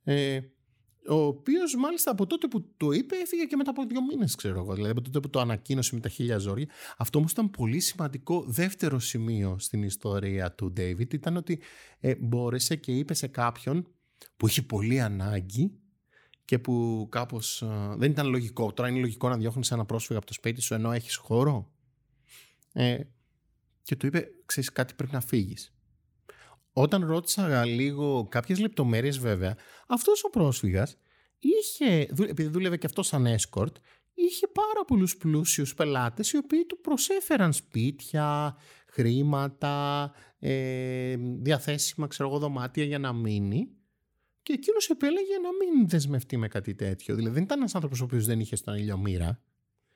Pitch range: 115-170 Hz